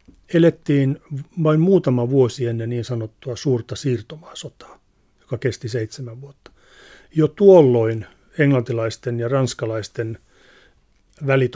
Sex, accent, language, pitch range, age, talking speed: male, native, Finnish, 115-135 Hz, 40-59, 100 wpm